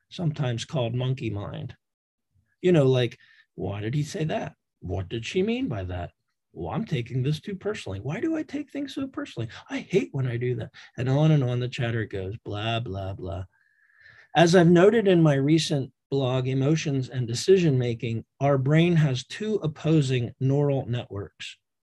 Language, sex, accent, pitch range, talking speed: English, male, American, 120-155 Hz, 180 wpm